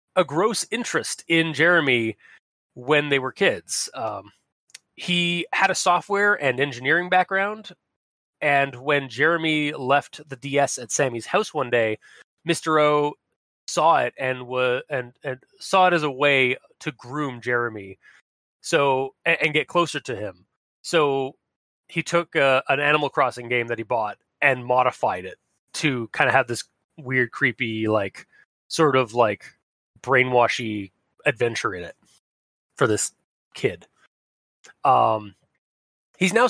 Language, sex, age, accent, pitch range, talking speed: English, male, 20-39, American, 125-165 Hz, 140 wpm